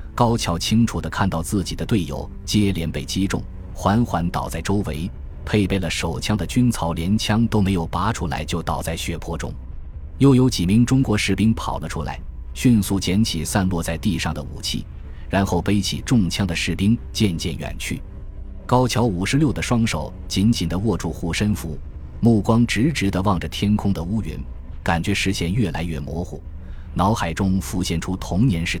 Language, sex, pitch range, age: Chinese, male, 80-105 Hz, 20-39